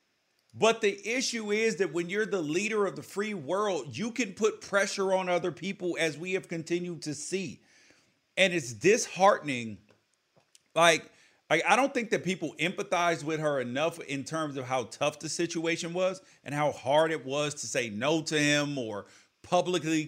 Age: 40-59